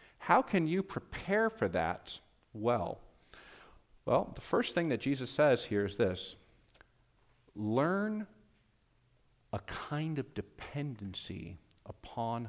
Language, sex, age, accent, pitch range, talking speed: English, male, 40-59, American, 105-135 Hz, 110 wpm